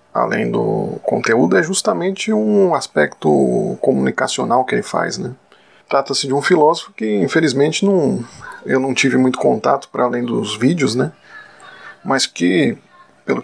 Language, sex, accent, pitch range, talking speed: Portuguese, male, Brazilian, 120-175 Hz, 140 wpm